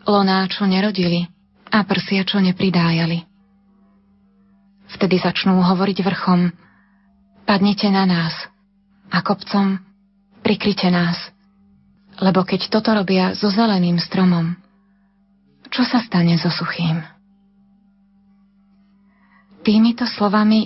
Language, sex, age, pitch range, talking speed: Slovak, female, 30-49, 185-200 Hz, 85 wpm